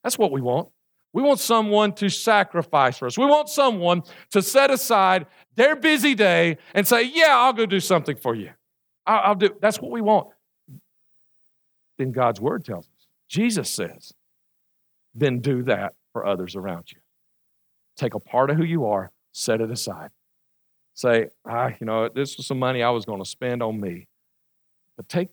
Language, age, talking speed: English, 50-69, 180 wpm